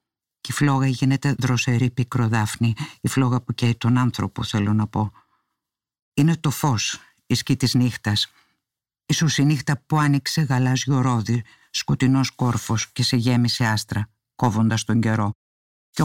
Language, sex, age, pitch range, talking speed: Greek, female, 50-69, 115-130 Hz, 140 wpm